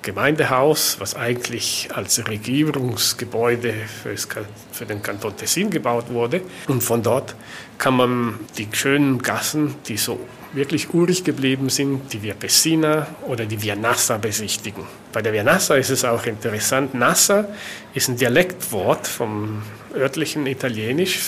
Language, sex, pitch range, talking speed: German, male, 115-160 Hz, 135 wpm